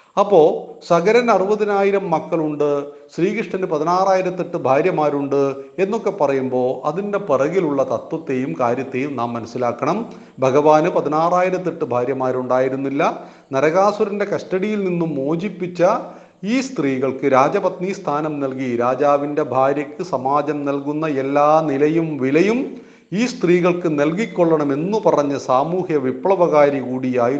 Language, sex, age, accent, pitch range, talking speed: Hindi, male, 40-59, native, 130-185 Hz, 80 wpm